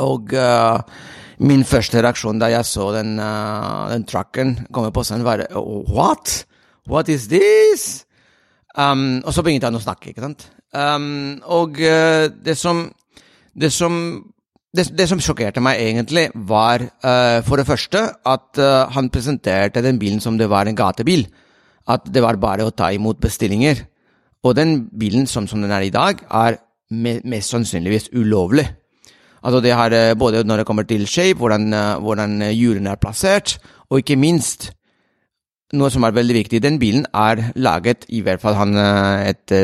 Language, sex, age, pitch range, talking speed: English, male, 30-49, 105-135 Hz, 170 wpm